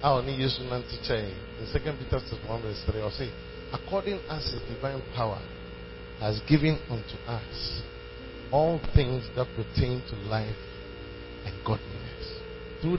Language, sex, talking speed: English, male, 100 wpm